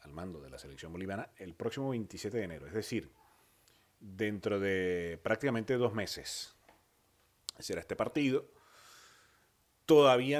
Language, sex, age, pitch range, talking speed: Spanish, male, 30-49, 85-115 Hz, 125 wpm